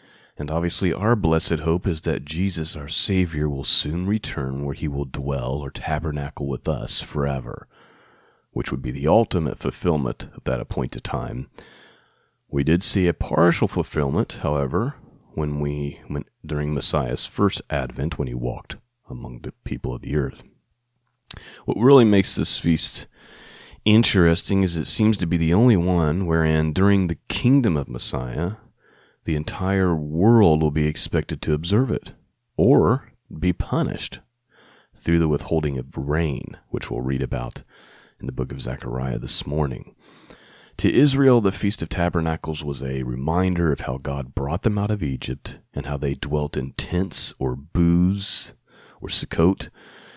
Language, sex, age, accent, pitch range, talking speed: English, male, 30-49, American, 70-95 Hz, 155 wpm